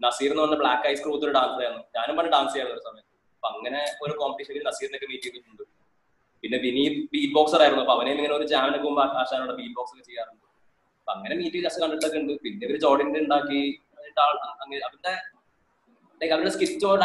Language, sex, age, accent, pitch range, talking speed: Malayalam, male, 20-39, native, 135-190 Hz, 160 wpm